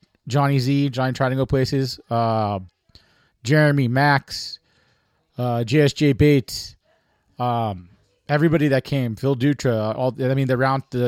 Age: 30-49